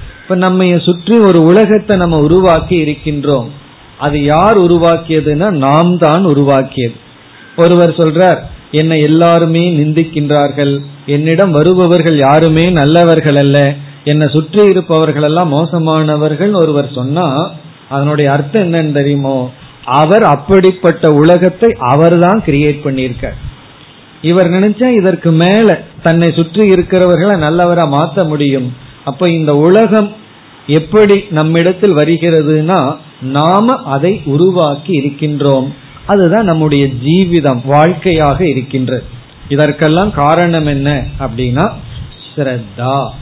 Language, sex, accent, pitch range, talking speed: Tamil, male, native, 140-175 Hz, 90 wpm